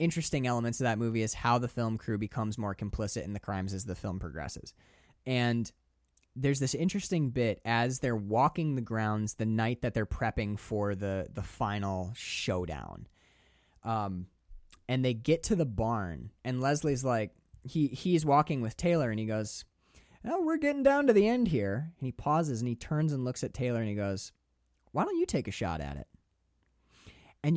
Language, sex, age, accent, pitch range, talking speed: English, male, 20-39, American, 100-155 Hz, 190 wpm